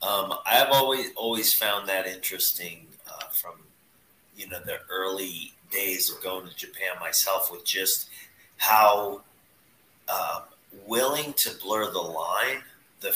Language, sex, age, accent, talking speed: English, male, 30-49, American, 130 wpm